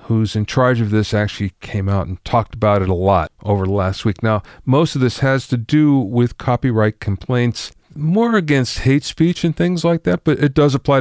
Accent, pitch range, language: American, 105-150 Hz, English